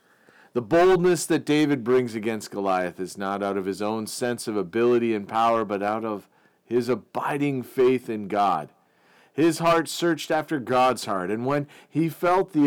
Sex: male